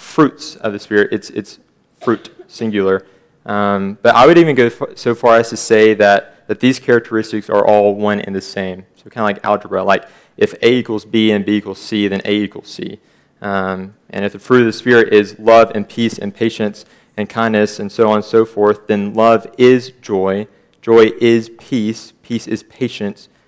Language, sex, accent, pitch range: English, male, American, 100-115 Hz